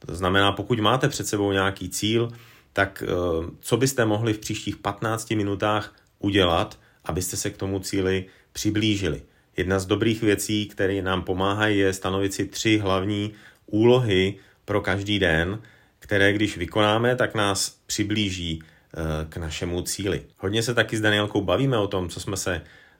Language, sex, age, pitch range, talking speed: Slovak, male, 30-49, 95-110 Hz, 155 wpm